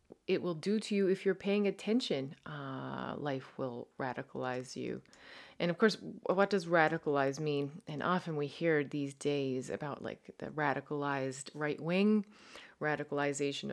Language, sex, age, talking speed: English, female, 30-49, 150 wpm